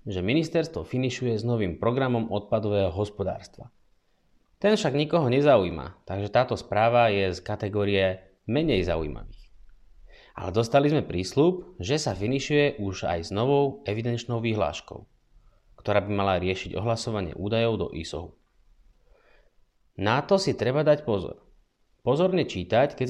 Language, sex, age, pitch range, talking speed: Slovak, male, 30-49, 95-130 Hz, 130 wpm